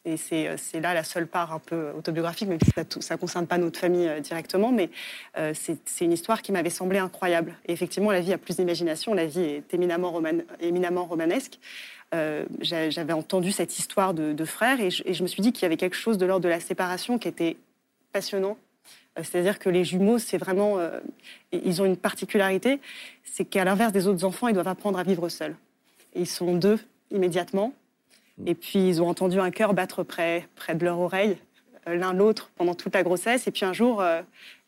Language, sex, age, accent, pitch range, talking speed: French, female, 20-39, French, 175-205 Hz, 215 wpm